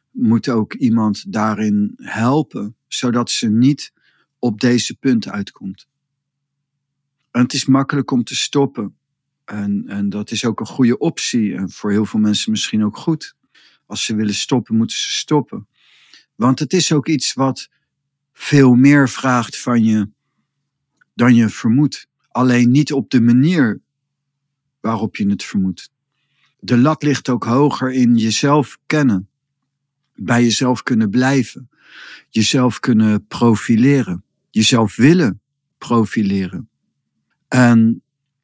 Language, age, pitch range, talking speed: Dutch, 50-69, 110-140 Hz, 130 wpm